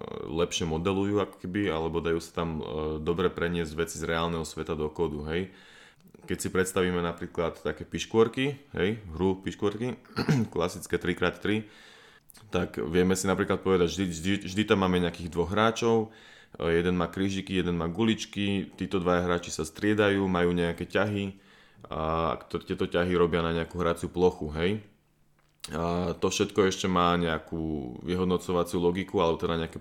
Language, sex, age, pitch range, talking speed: Slovak, male, 20-39, 85-95 Hz, 145 wpm